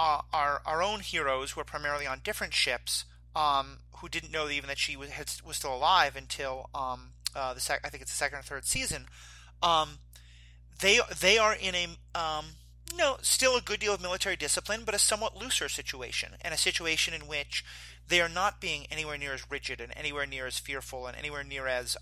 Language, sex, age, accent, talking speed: English, male, 30-49, American, 220 wpm